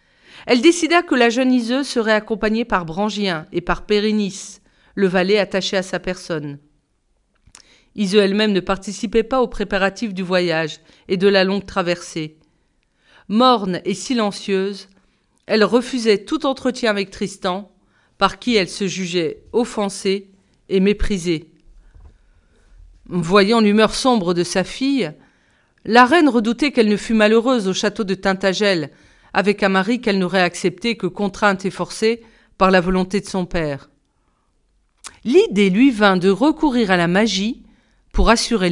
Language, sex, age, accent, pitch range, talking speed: French, female, 40-59, French, 185-235 Hz, 145 wpm